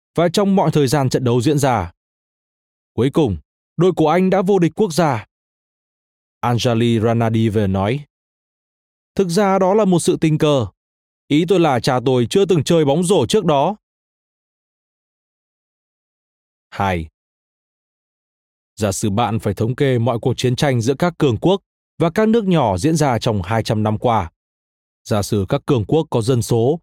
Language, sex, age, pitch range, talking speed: Vietnamese, male, 20-39, 110-170 Hz, 170 wpm